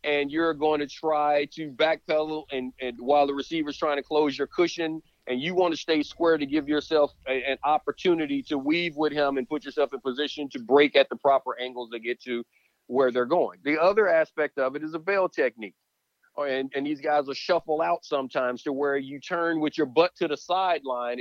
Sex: male